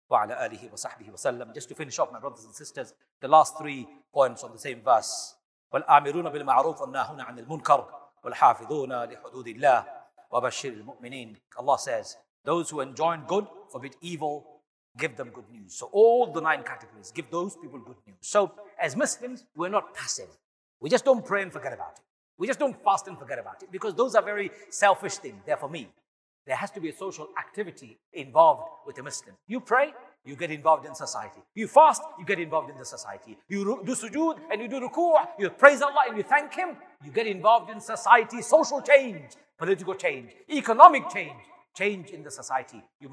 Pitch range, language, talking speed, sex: 170-255 Hz, English, 175 wpm, male